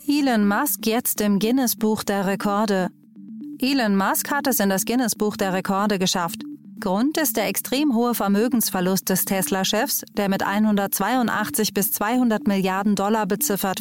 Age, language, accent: 30-49, German, German